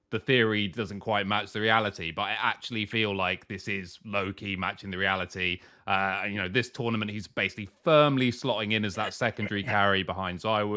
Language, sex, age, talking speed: English, male, 30-49, 190 wpm